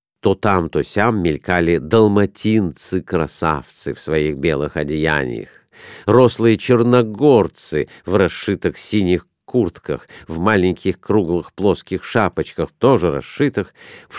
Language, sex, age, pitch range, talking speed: Russian, male, 50-69, 90-135 Hz, 100 wpm